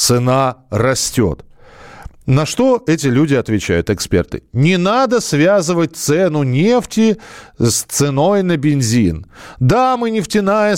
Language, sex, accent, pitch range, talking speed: Russian, male, native, 125-190 Hz, 110 wpm